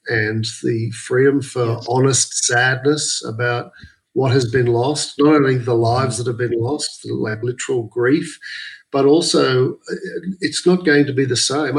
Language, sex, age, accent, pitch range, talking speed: English, male, 50-69, Australian, 115-145 Hz, 160 wpm